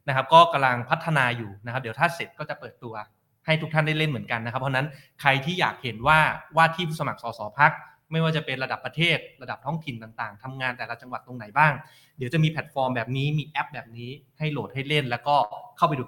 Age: 20-39